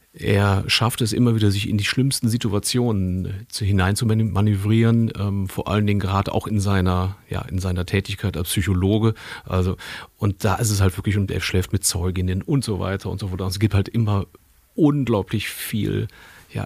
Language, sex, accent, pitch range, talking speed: German, male, German, 95-115 Hz, 185 wpm